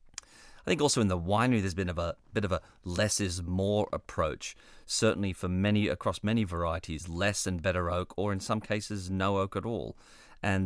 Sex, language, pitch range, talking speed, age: male, English, 90-105 Hz, 205 wpm, 40-59